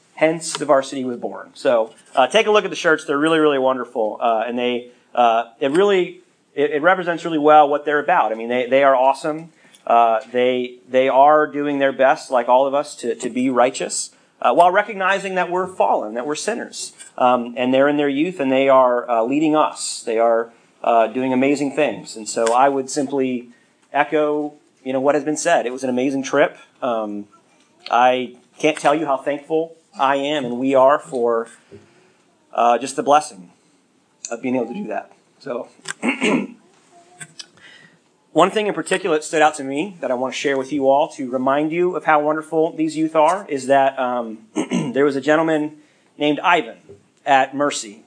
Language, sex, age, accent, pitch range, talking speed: English, male, 40-59, American, 125-160 Hz, 195 wpm